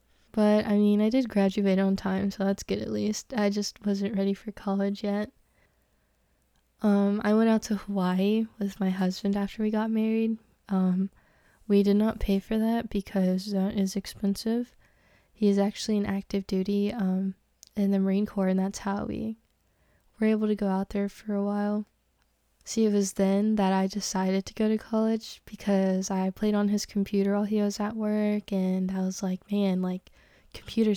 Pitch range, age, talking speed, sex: 195-210 Hz, 10-29, 190 wpm, female